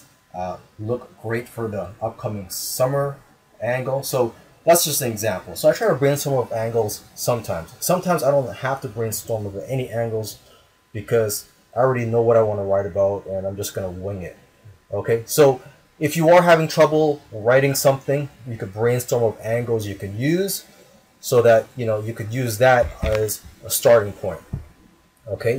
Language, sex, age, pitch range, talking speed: English, male, 30-49, 105-135 Hz, 180 wpm